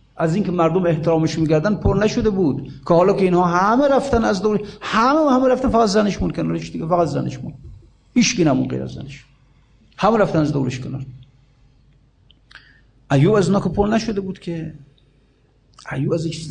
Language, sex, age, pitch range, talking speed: Persian, male, 50-69, 130-185 Hz, 165 wpm